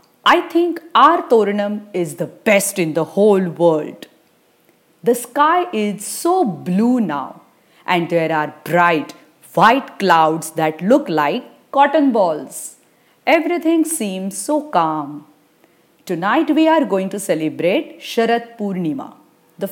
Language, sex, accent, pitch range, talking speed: English, female, Indian, 175-280 Hz, 125 wpm